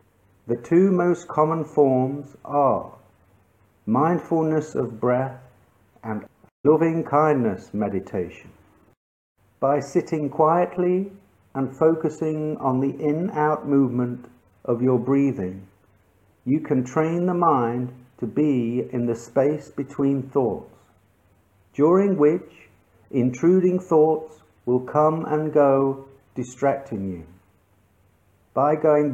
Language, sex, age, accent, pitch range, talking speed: English, male, 50-69, British, 110-155 Hz, 100 wpm